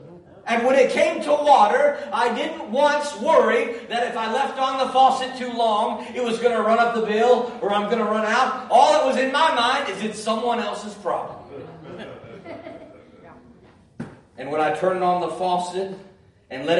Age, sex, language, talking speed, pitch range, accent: 40-59, male, English, 190 wpm, 165-260 Hz, American